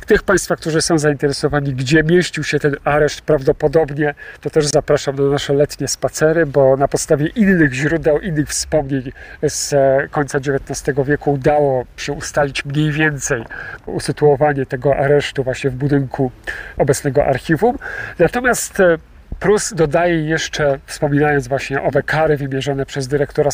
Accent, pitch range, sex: native, 140-160 Hz, male